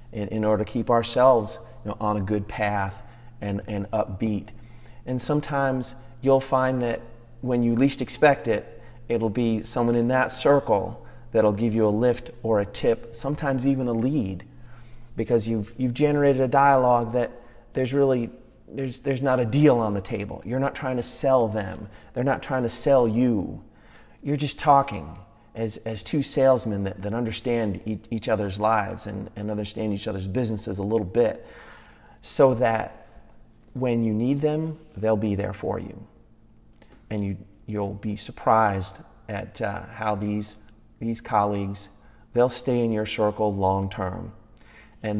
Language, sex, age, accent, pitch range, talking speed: English, male, 30-49, American, 105-120 Hz, 165 wpm